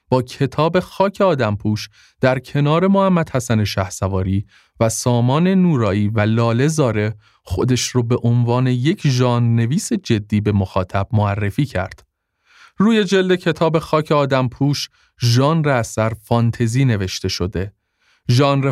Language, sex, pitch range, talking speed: Persian, male, 110-150 Hz, 120 wpm